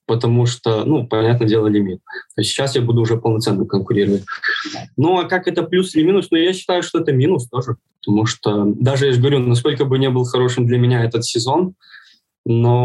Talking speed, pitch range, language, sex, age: 190 wpm, 110-130 Hz, Russian, male, 20-39